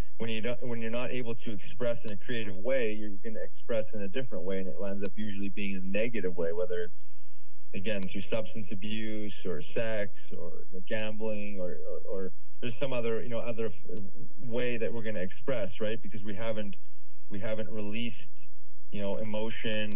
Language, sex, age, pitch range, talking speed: English, male, 30-49, 95-120 Hz, 200 wpm